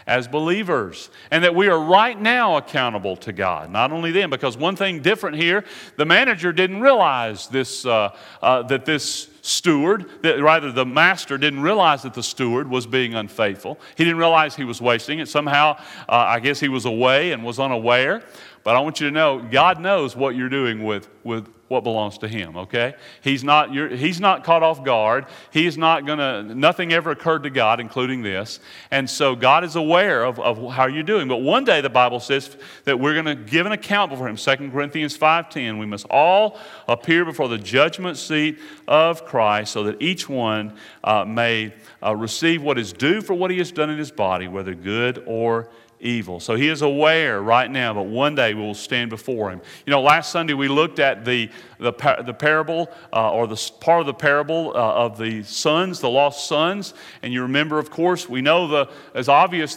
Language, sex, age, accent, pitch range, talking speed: English, male, 40-59, American, 120-160 Hz, 210 wpm